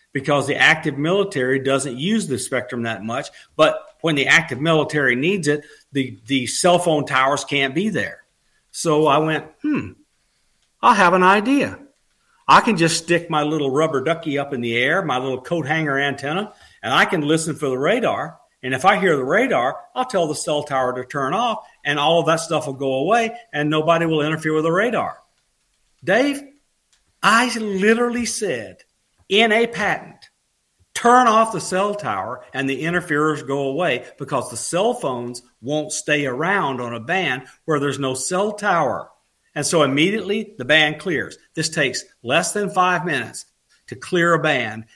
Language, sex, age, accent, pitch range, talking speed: English, male, 50-69, American, 140-190 Hz, 180 wpm